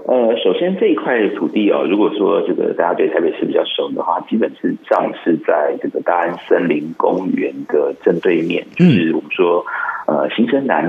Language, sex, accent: Chinese, male, native